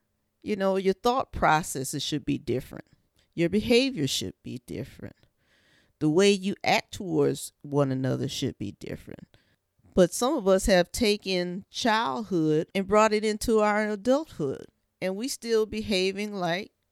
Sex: female